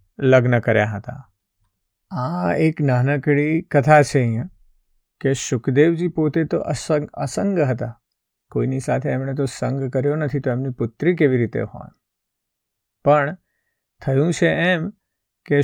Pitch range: 115-145 Hz